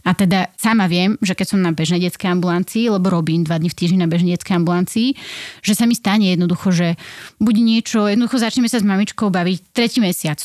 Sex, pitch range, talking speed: female, 185-225 Hz, 215 wpm